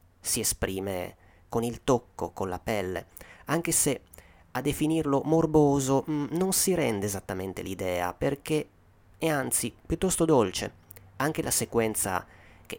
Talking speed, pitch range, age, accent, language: 125 wpm, 95-135 Hz, 30-49, native, Italian